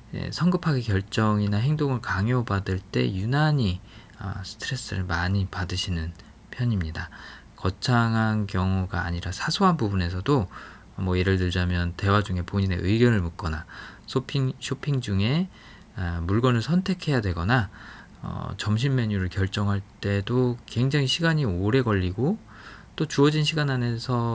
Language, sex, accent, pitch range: Korean, male, native, 95-130 Hz